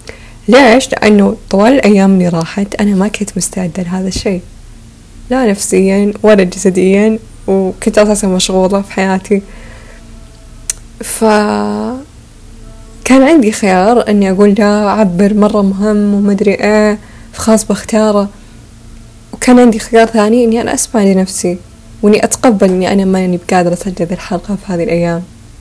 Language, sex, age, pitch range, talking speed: Arabic, female, 10-29, 185-220 Hz, 125 wpm